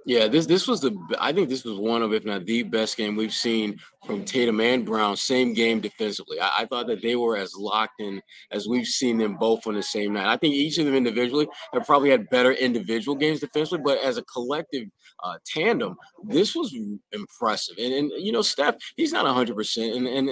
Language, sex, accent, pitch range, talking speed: English, male, American, 115-155 Hz, 220 wpm